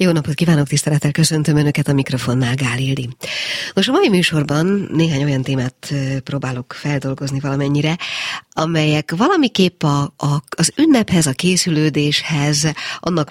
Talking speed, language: 125 wpm, Hungarian